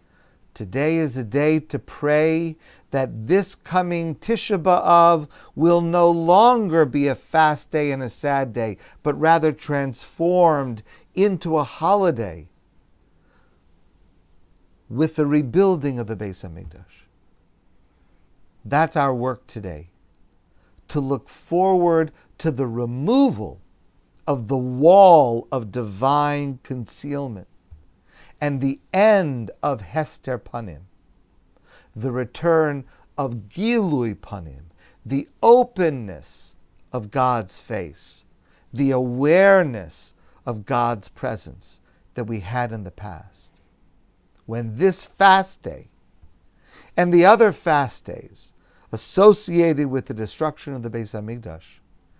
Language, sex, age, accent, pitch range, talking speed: English, male, 50-69, American, 95-155 Hz, 110 wpm